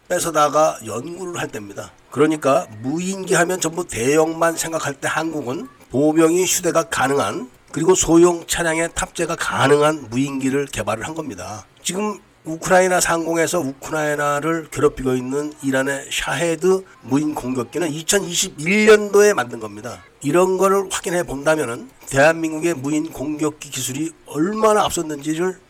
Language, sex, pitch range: Korean, male, 135-175 Hz